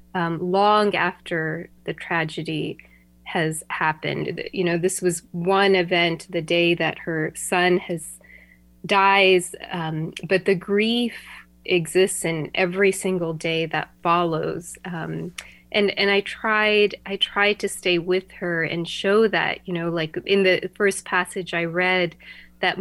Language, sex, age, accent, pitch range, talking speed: English, female, 20-39, American, 165-195 Hz, 145 wpm